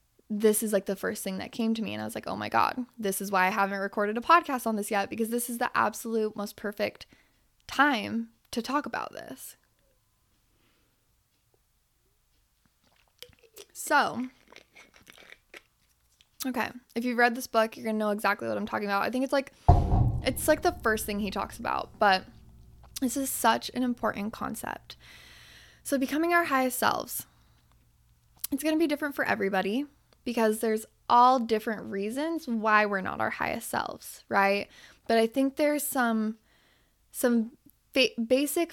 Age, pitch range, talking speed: 10-29, 200-260 Hz, 165 wpm